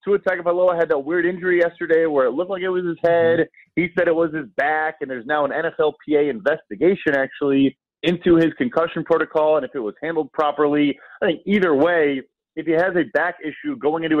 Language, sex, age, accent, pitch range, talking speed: English, male, 30-49, American, 145-170 Hz, 210 wpm